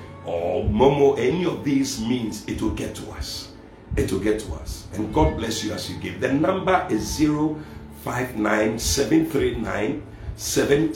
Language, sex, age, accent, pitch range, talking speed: English, male, 50-69, Nigerian, 95-115 Hz, 180 wpm